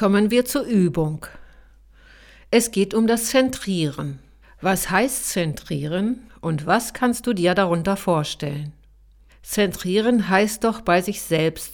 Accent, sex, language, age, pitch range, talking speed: German, female, German, 50-69, 160-230 Hz, 130 wpm